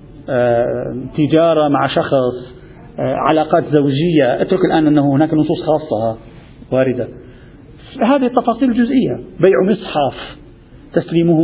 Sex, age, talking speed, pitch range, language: male, 50-69, 95 wpm, 150-215 Hz, Arabic